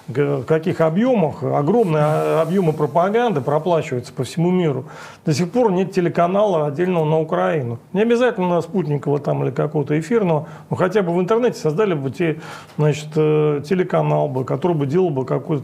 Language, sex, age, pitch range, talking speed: Russian, male, 40-59, 150-200 Hz, 160 wpm